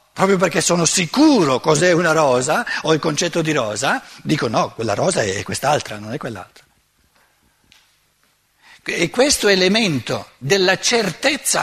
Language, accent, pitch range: Italian, native, 150-205 Hz